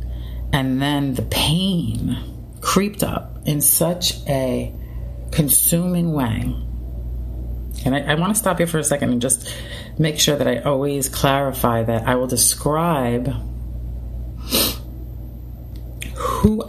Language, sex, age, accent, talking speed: English, female, 40-59, American, 120 wpm